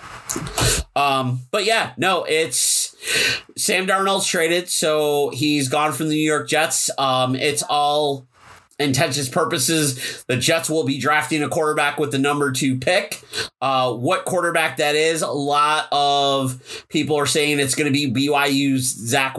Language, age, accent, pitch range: English, 30-49, American, 135-170 Hz